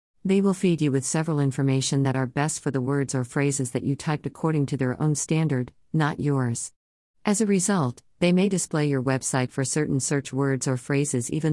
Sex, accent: female, American